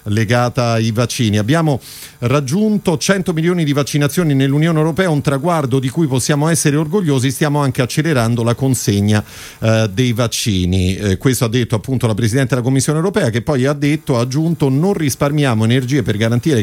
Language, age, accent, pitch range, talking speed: Italian, 40-59, native, 115-145 Hz, 165 wpm